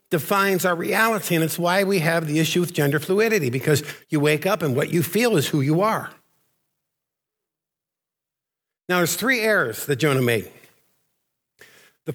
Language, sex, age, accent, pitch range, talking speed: English, male, 50-69, American, 160-205 Hz, 165 wpm